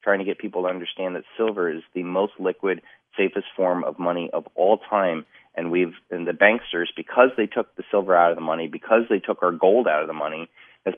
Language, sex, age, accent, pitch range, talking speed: English, male, 30-49, American, 85-110 Hz, 235 wpm